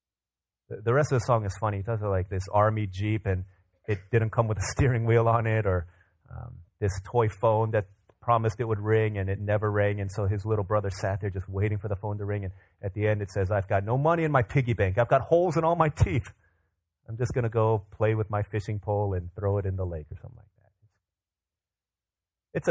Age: 30-49